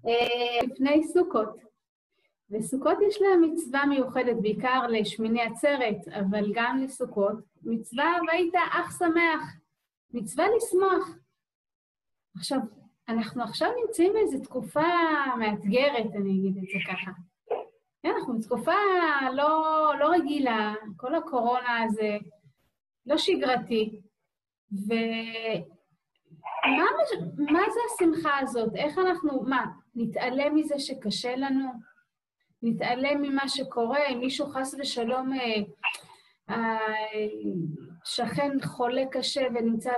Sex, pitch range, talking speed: female, 215-290 Hz, 100 wpm